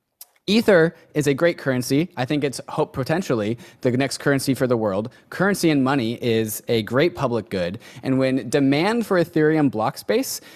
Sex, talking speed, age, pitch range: male, 175 wpm, 20-39, 125-165 Hz